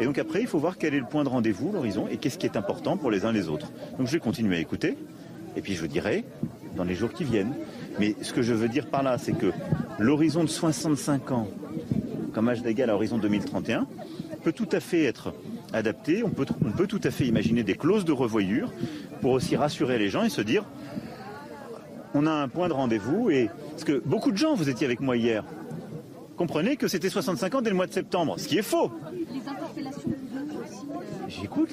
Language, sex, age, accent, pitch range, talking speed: French, male, 40-59, French, 120-185 Hz, 220 wpm